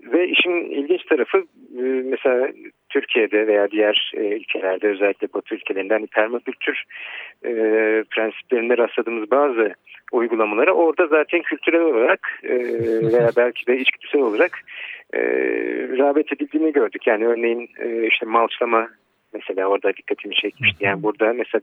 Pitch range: 105-145 Hz